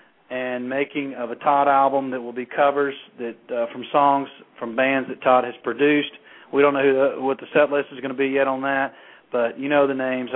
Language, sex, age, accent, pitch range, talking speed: English, male, 40-59, American, 130-160 Hz, 240 wpm